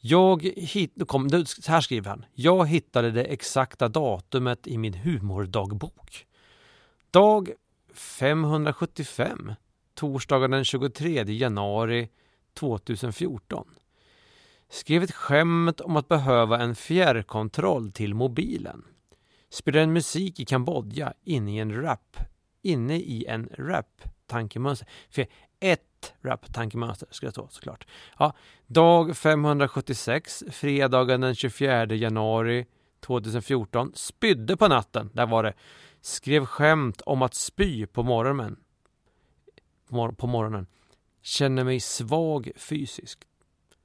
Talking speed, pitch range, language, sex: 110 wpm, 115-155 Hz, Swedish, male